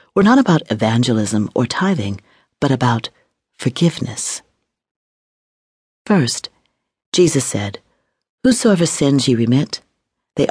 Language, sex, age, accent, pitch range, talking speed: English, female, 40-59, American, 115-175 Hz, 95 wpm